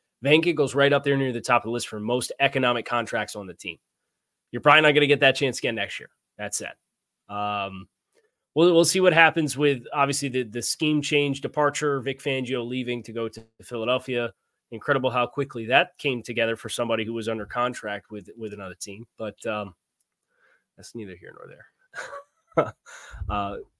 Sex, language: male, English